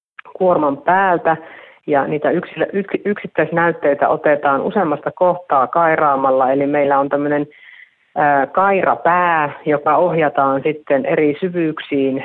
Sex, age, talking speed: female, 30-49, 100 wpm